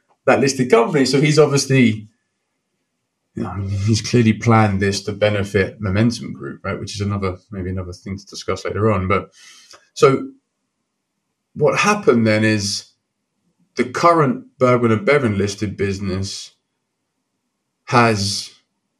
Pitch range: 100-125 Hz